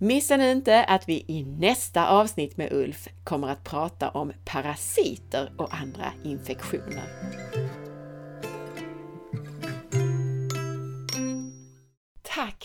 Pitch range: 130-190 Hz